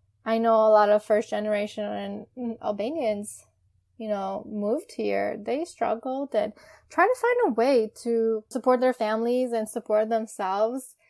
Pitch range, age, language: 210-245 Hz, 10-29, English